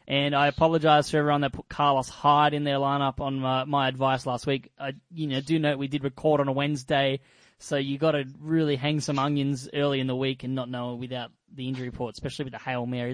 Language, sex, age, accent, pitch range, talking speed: English, male, 20-39, Australian, 130-155 Hz, 240 wpm